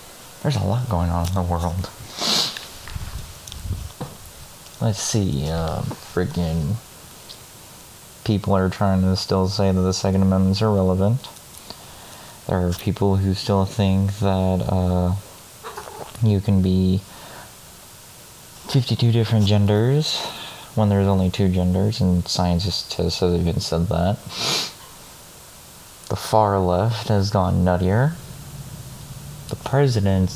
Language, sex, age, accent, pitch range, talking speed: English, male, 20-39, American, 95-135 Hz, 110 wpm